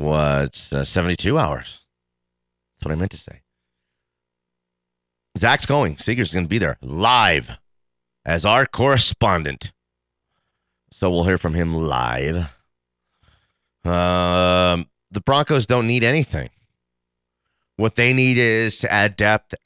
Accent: American